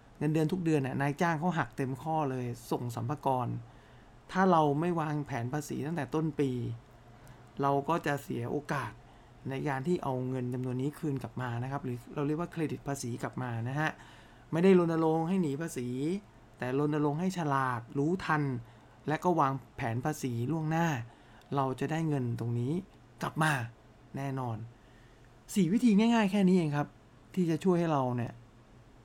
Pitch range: 125-155 Hz